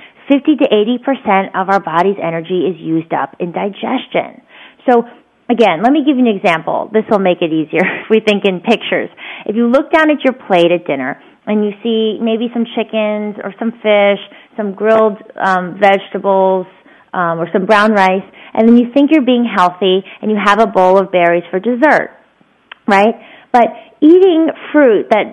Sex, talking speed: female, 185 wpm